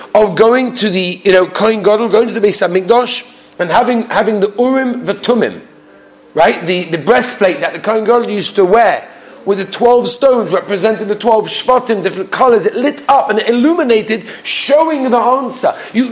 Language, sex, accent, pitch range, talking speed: English, male, British, 170-245 Hz, 180 wpm